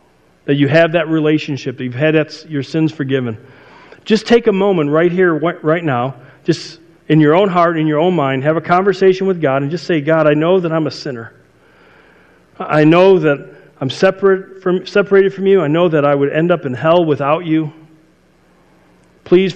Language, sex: English, male